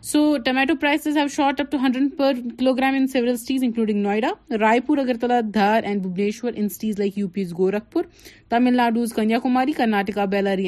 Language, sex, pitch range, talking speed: Urdu, female, 195-250 Hz, 170 wpm